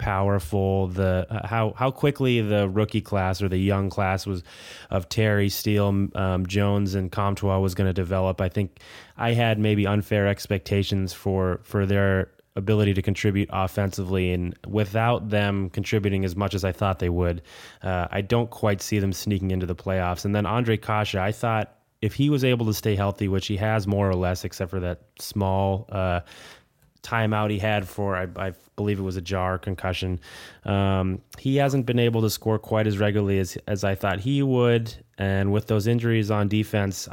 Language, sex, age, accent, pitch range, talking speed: English, male, 20-39, American, 95-110 Hz, 190 wpm